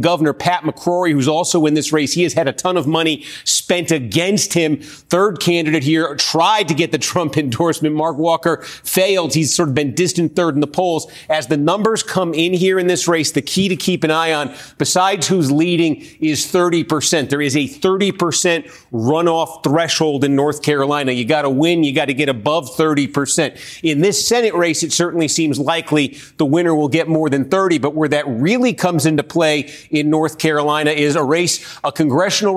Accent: American